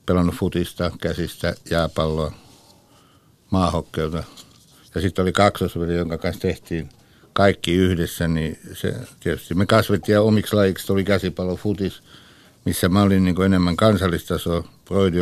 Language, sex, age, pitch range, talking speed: Finnish, male, 60-79, 85-100 Hz, 125 wpm